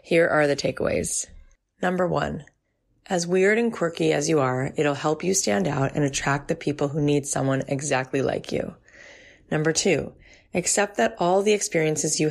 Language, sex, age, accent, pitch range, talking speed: English, female, 30-49, American, 145-180 Hz, 175 wpm